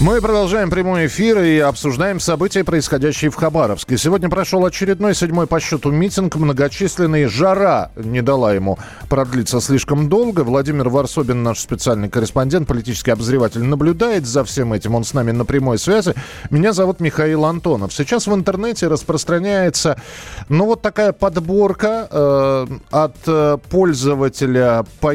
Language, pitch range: Russian, 125-185 Hz